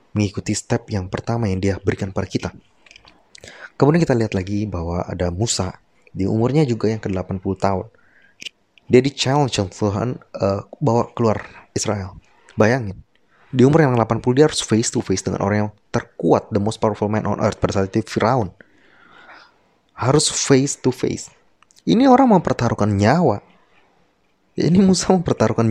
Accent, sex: native, male